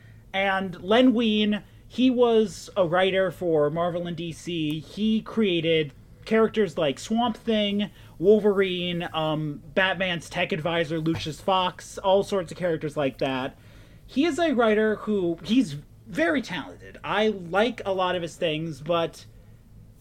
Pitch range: 145-195 Hz